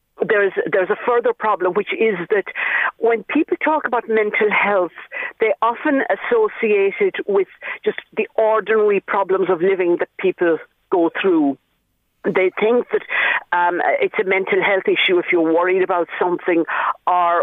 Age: 50-69